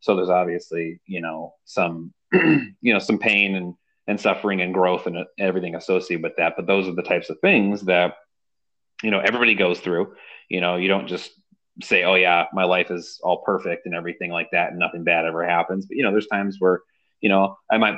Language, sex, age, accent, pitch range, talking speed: English, male, 30-49, American, 85-95 Hz, 215 wpm